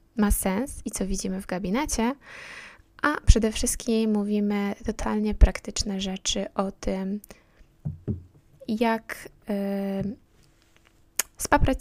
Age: 20-39